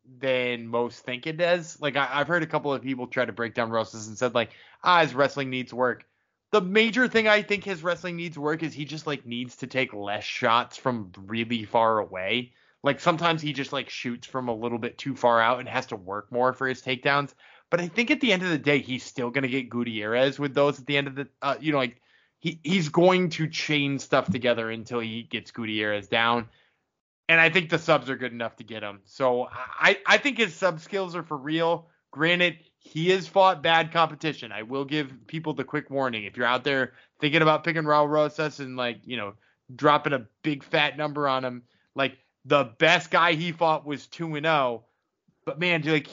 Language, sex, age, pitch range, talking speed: English, male, 20-39, 125-155 Hz, 225 wpm